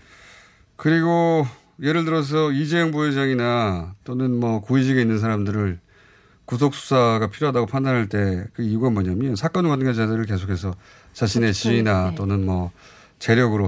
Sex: male